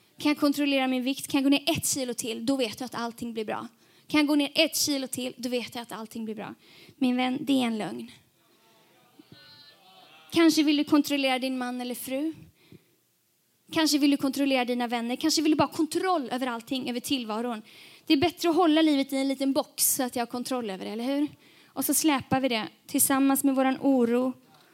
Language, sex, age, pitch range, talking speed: Swedish, female, 20-39, 240-295 Hz, 220 wpm